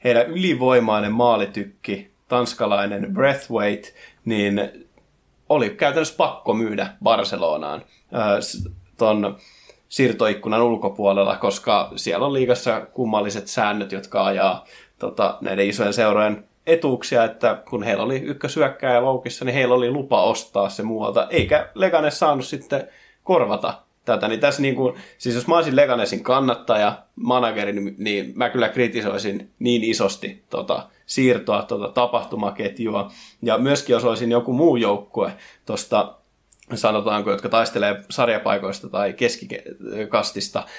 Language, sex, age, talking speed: Finnish, male, 20-39, 120 wpm